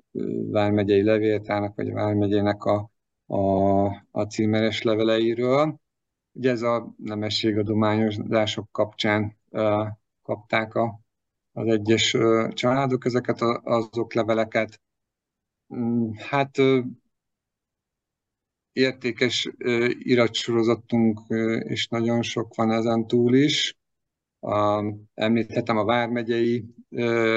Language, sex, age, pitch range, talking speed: Hungarian, male, 50-69, 105-115 Hz, 80 wpm